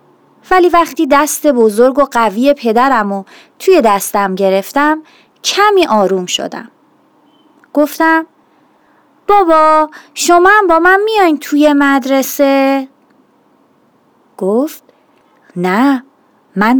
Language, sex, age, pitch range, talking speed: Persian, female, 30-49, 250-325 Hz, 95 wpm